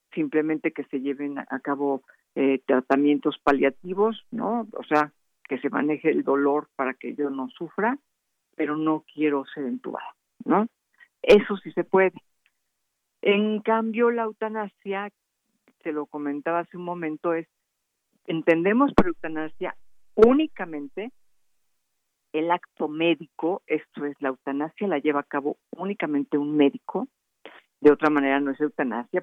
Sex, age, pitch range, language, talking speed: female, 50-69, 145-180 Hz, Spanish, 140 wpm